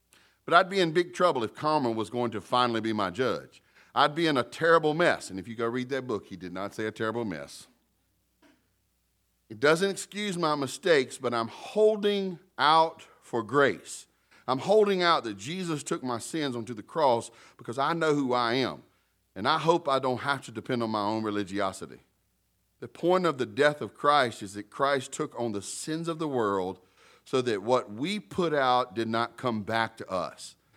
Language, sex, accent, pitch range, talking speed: English, male, American, 115-180 Hz, 205 wpm